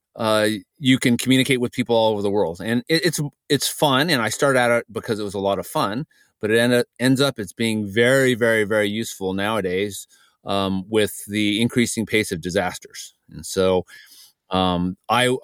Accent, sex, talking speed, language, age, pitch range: American, male, 195 wpm, English, 30-49, 100-120 Hz